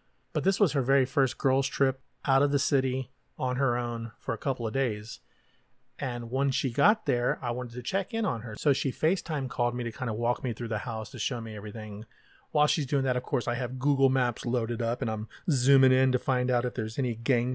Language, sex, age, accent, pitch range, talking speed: English, male, 30-49, American, 120-150 Hz, 245 wpm